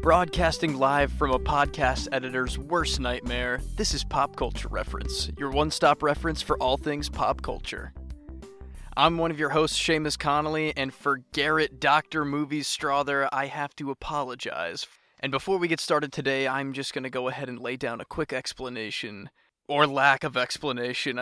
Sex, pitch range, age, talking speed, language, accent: male, 135-150 Hz, 20-39, 170 wpm, English, American